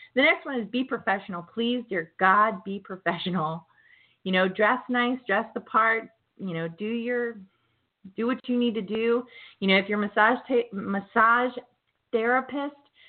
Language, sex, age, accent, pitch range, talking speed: English, female, 20-39, American, 185-235 Hz, 165 wpm